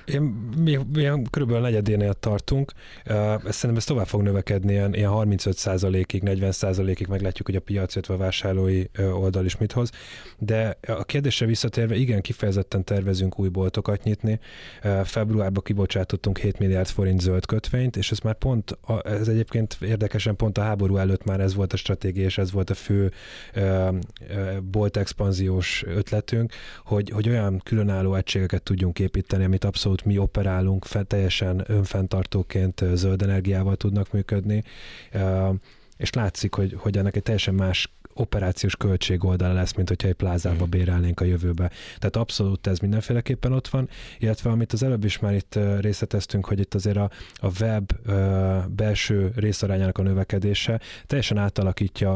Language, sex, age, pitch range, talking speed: Hungarian, male, 20-39, 95-110 Hz, 150 wpm